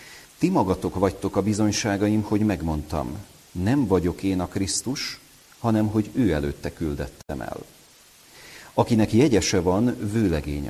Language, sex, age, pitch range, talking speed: Hungarian, male, 40-59, 85-115 Hz, 125 wpm